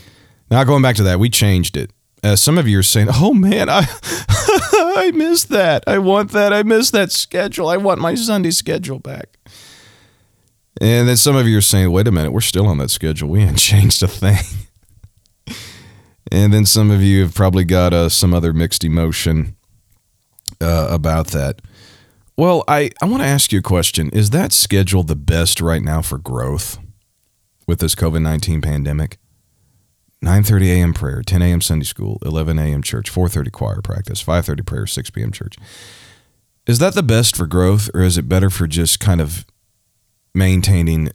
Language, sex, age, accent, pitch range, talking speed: English, male, 40-59, American, 85-110 Hz, 180 wpm